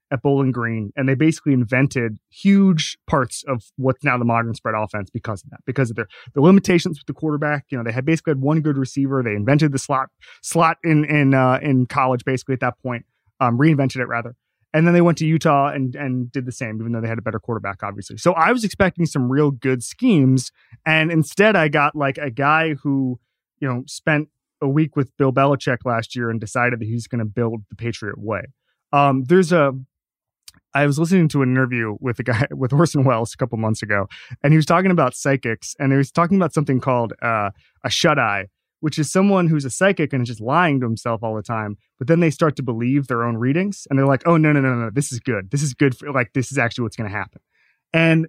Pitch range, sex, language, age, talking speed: 120-155 Hz, male, English, 30-49, 240 wpm